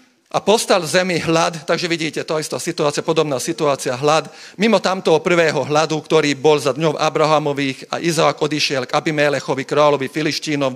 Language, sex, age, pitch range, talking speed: Slovak, male, 40-59, 140-165 Hz, 165 wpm